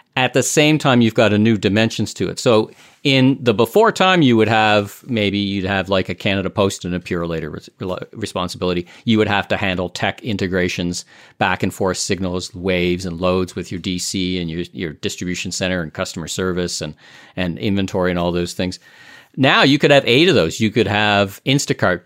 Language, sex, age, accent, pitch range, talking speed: English, male, 40-59, American, 90-115 Hz, 200 wpm